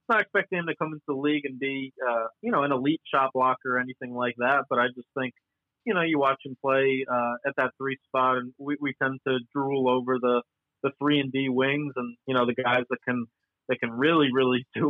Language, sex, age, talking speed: English, male, 30-49, 245 wpm